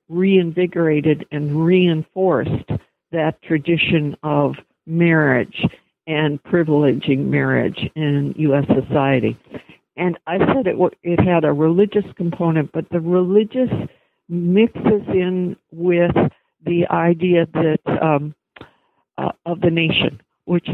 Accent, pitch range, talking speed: American, 140-175 Hz, 105 wpm